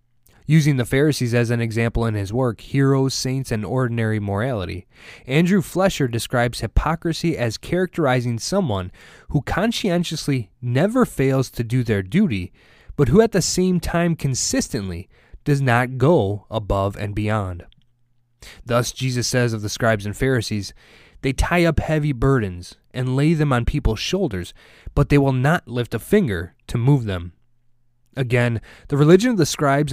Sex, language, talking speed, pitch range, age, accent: male, English, 155 wpm, 110-145 Hz, 20-39, American